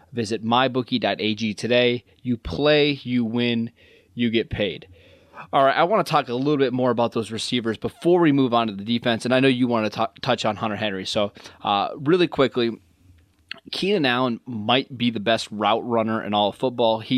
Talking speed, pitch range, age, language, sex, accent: 200 wpm, 110-130 Hz, 20-39, English, male, American